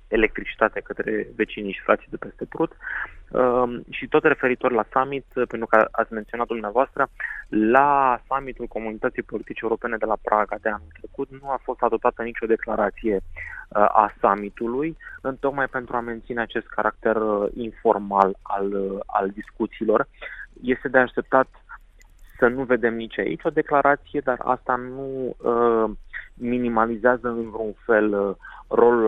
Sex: male